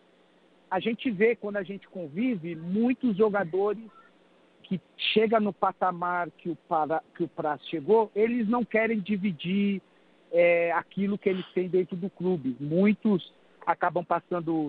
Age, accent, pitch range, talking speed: 50-69, Brazilian, 165-205 Hz, 130 wpm